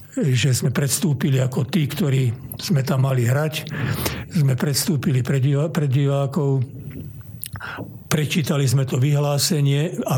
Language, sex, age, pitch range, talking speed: Slovak, male, 60-79, 130-155 Hz, 125 wpm